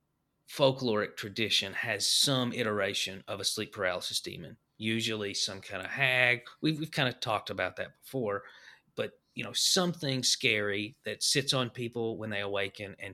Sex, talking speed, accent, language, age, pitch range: male, 165 wpm, American, English, 30-49, 110-140 Hz